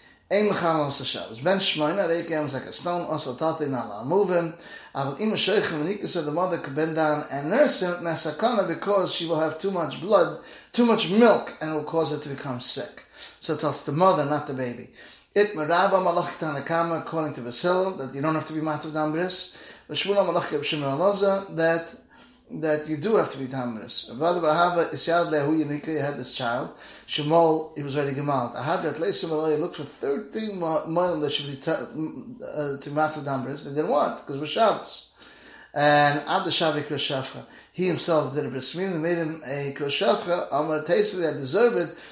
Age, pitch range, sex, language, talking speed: 30-49, 140-175 Hz, male, English, 185 wpm